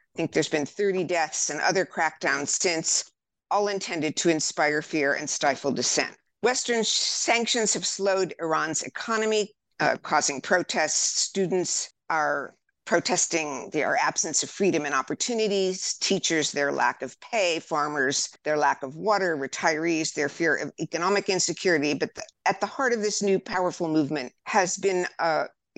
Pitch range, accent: 155-200 Hz, American